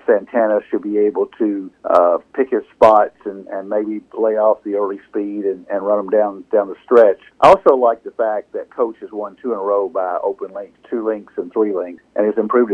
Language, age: English, 50-69